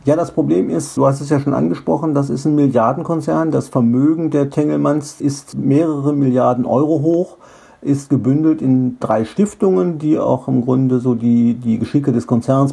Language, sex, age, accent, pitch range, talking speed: German, male, 50-69, German, 120-145 Hz, 180 wpm